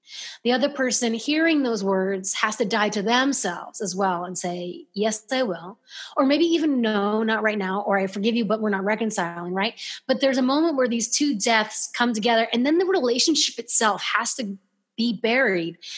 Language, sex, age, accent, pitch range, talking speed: English, female, 30-49, American, 200-250 Hz, 200 wpm